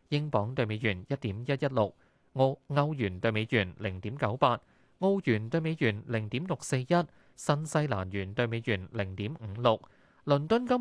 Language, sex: Chinese, male